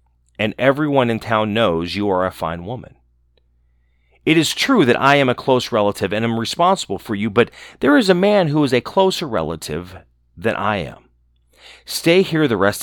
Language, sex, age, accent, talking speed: English, male, 40-59, American, 190 wpm